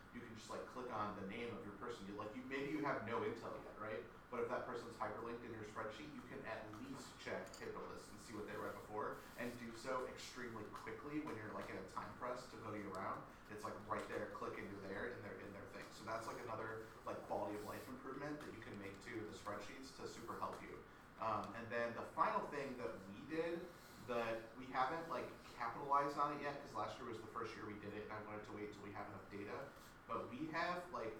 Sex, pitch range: male, 105-125 Hz